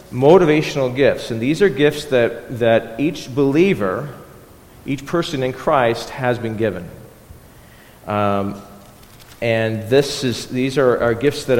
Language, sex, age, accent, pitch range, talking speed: English, male, 40-59, American, 120-150 Hz, 135 wpm